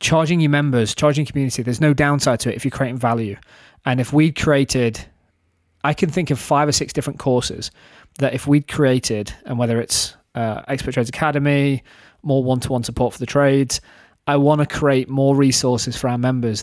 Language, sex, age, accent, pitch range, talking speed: English, male, 20-39, British, 120-145 Hz, 190 wpm